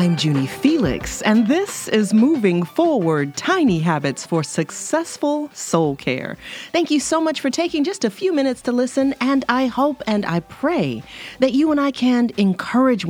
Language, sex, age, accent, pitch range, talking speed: English, female, 40-59, American, 165-260 Hz, 175 wpm